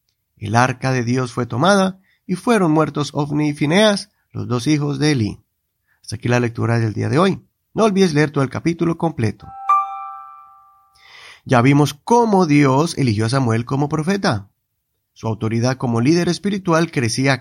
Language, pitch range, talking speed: Spanish, 125-185 Hz, 160 wpm